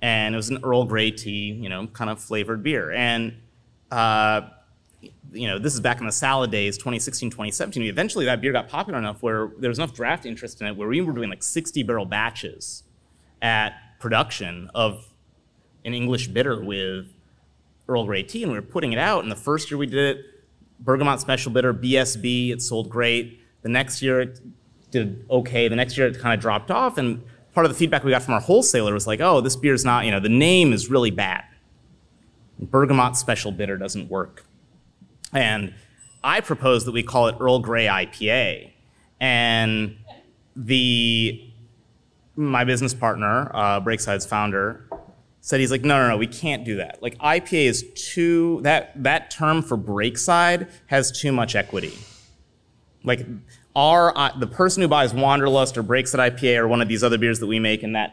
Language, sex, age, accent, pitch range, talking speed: English, male, 30-49, American, 110-130 Hz, 190 wpm